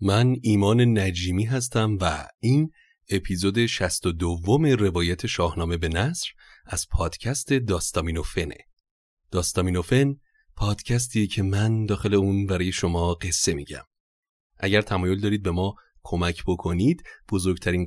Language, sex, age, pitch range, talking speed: Persian, male, 30-49, 90-110 Hz, 130 wpm